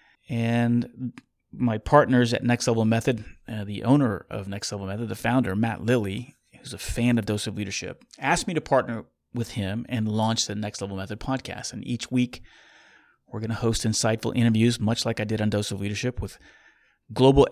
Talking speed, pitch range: 195 wpm, 105-125 Hz